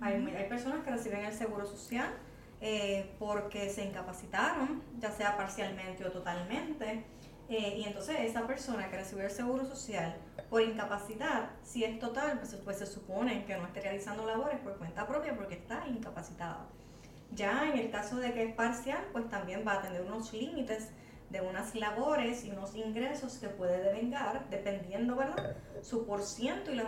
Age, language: 20-39, Spanish